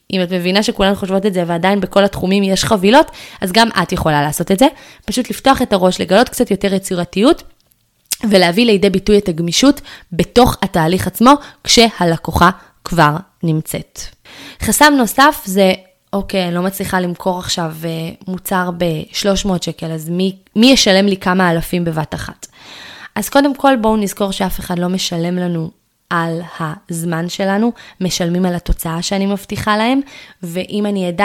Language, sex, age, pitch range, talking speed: Hebrew, female, 20-39, 180-215 Hz, 155 wpm